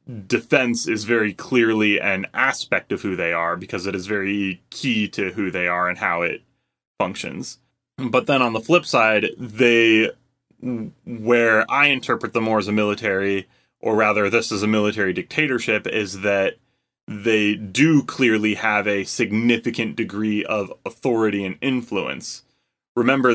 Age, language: 20-39, English